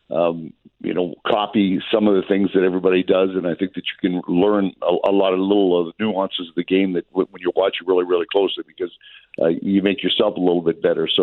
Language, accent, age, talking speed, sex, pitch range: English, American, 50-69, 250 wpm, male, 90-105 Hz